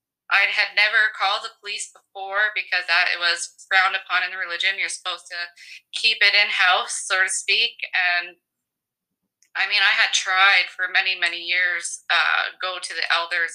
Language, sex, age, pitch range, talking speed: English, female, 20-39, 175-200 Hz, 180 wpm